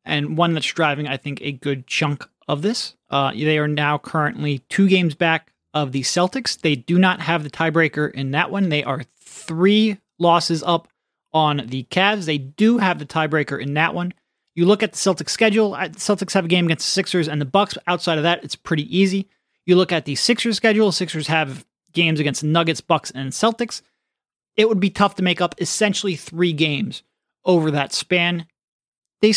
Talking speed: 200 wpm